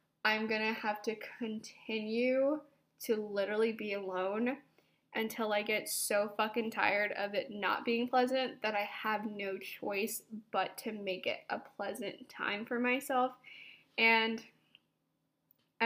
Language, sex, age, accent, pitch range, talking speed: English, female, 10-29, American, 210-245 Hz, 140 wpm